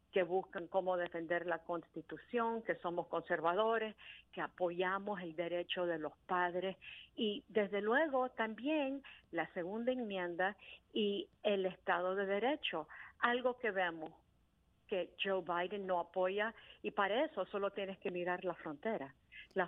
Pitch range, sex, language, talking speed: 175-215 Hz, female, Spanish, 140 wpm